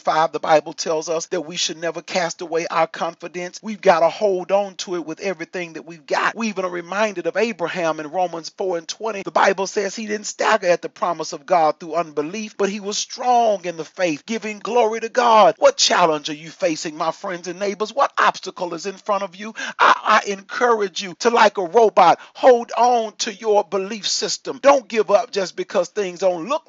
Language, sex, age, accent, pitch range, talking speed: English, male, 40-59, American, 180-230 Hz, 220 wpm